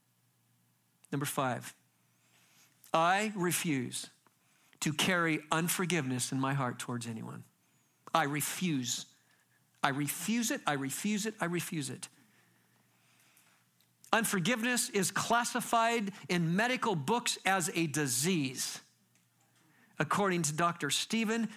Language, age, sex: English, 50-69, male